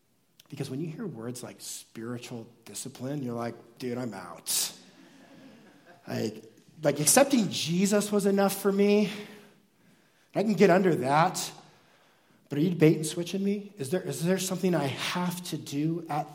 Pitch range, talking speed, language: 125-175 Hz, 155 wpm, English